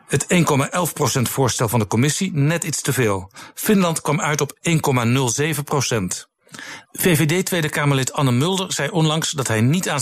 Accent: Dutch